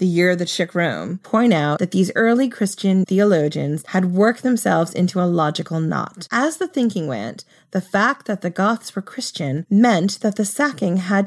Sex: female